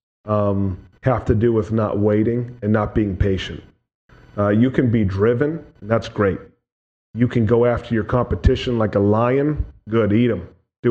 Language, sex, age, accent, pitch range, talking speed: English, male, 30-49, American, 105-125 Hz, 170 wpm